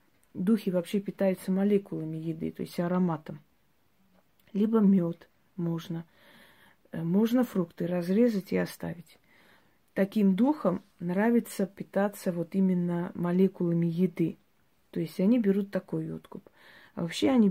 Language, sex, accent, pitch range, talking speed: Russian, female, native, 170-195 Hz, 115 wpm